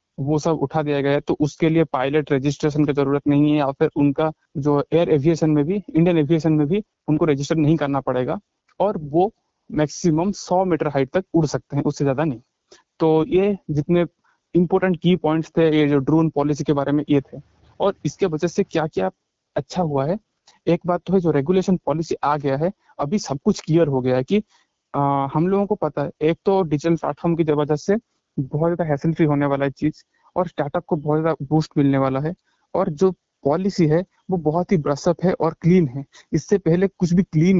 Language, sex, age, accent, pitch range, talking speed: Hindi, male, 20-39, native, 145-180 Hz, 205 wpm